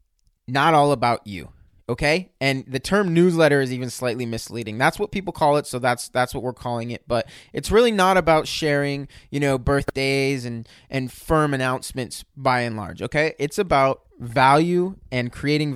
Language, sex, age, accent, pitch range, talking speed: English, male, 20-39, American, 125-155 Hz, 180 wpm